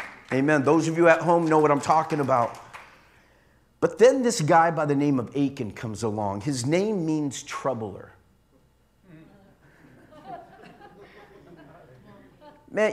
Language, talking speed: English, 125 wpm